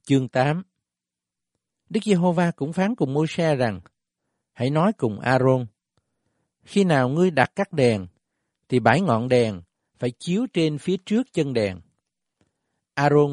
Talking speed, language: 140 wpm, Vietnamese